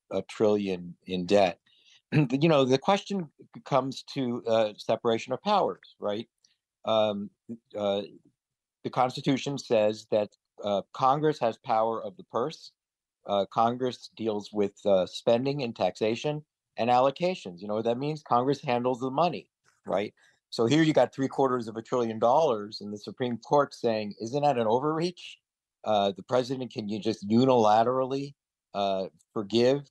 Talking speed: 155 wpm